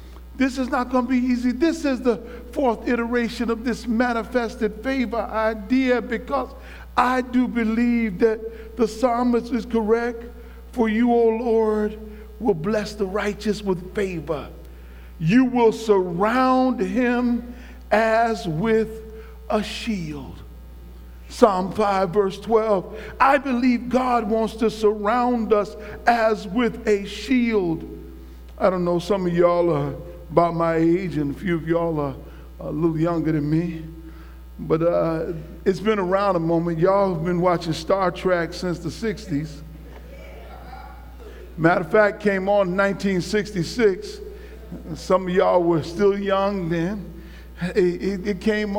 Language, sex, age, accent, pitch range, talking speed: English, male, 60-79, American, 170-230 Hz, 140 wpm